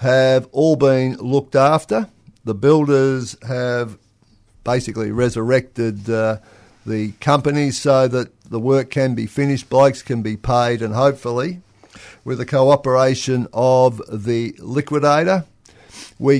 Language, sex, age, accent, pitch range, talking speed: English, male, 50-69, Australian, 110-135 Hz, 120 wpm